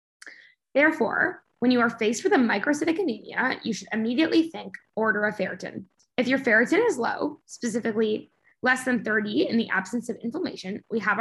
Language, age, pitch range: English, 10-29, 205-255 Hz